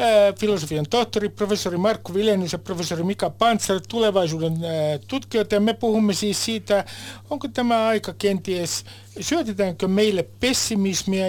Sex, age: male, 60-79